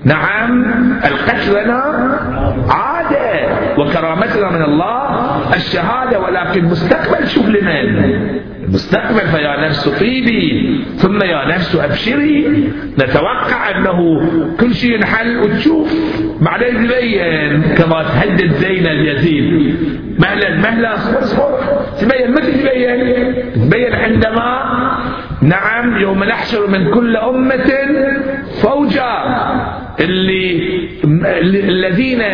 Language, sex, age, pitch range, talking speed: Arabic, male, 50-69, 185-275 Hz, 90 wpm